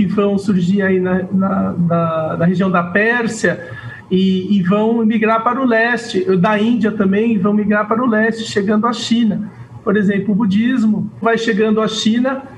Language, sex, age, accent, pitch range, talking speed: Portuguese, male, 50-69, Brazilian, 190-225 Hz, 175 wpm